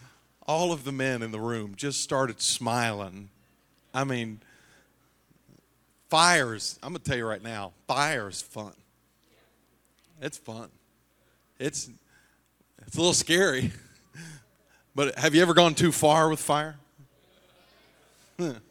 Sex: male